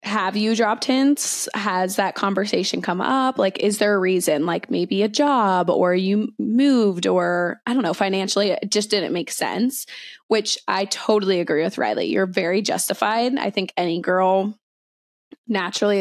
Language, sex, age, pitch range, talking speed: English, female, 20-39, 190-225 Hz, 170 wpm